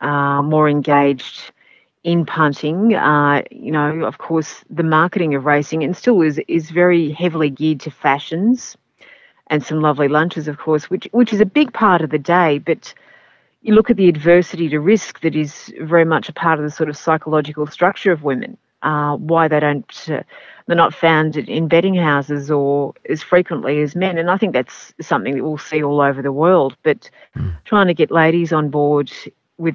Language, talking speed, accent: English, 195 wpm, Australian